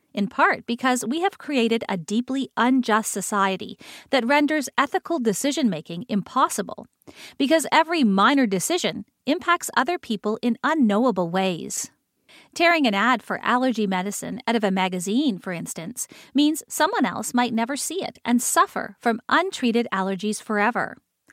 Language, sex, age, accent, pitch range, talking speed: English, female, 40-59, American, 205-285 Hz, 140 wpm